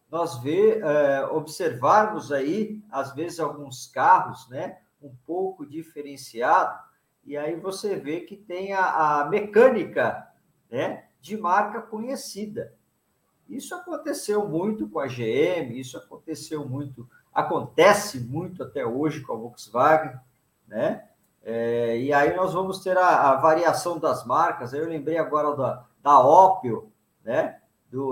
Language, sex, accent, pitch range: Portuguese, male, Brazilian, 145-215 Hz